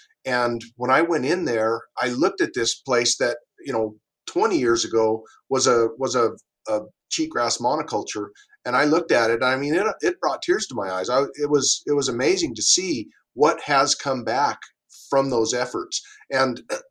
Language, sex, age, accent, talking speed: English, male, 40-59, American, 195 wpm